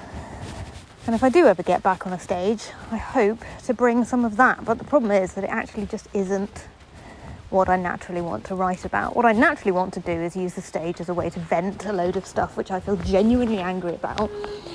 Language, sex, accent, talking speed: English, female, British, 235 wpm